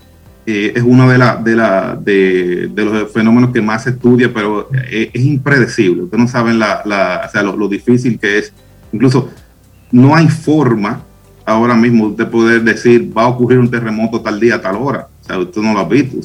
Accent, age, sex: Venezuelan, 40-59, male